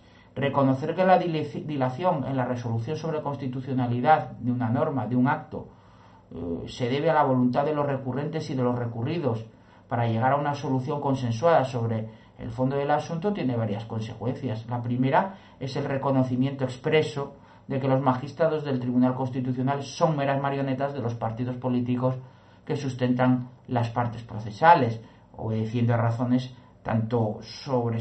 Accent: Spanish